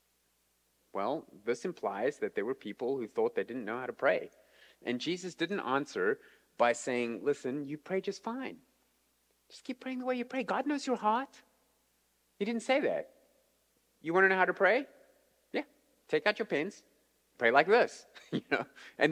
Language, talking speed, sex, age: English, 185 wpm, male, 30-49